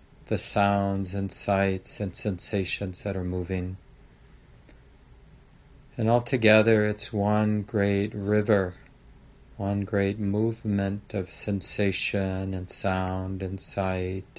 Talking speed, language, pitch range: 100 wpm, English, 95-105 Hz